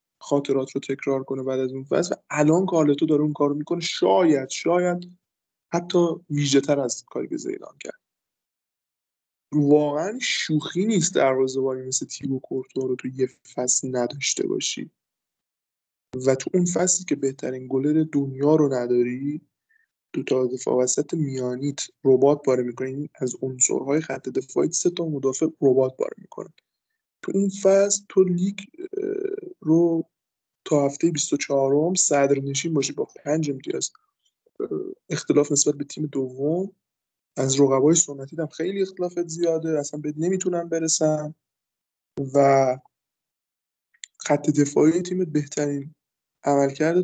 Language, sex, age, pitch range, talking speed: Persian, male, 20-39, 135-175 Hz, 120 wpm